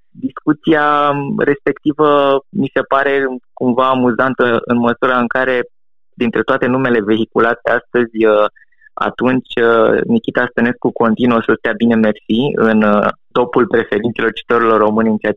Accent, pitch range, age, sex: native, 105-130 Hz, 20-39, male